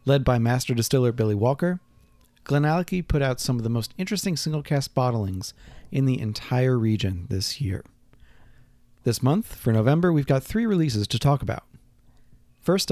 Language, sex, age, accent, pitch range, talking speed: English, male, 40-59, American, 115-150 Hz, 160 wpm